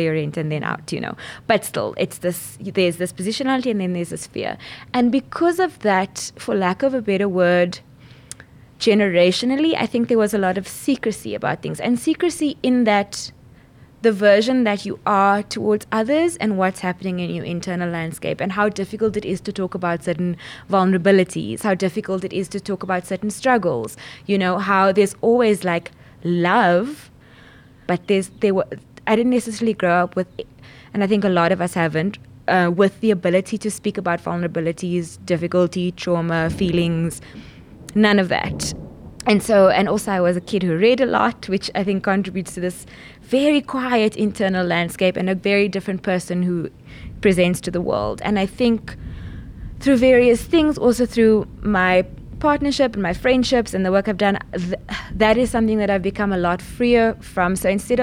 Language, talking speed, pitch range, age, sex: English, 180 wpm, 175-220 Hz, 20-39, female